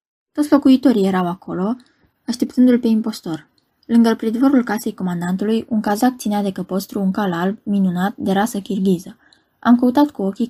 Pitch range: 195-245 Hz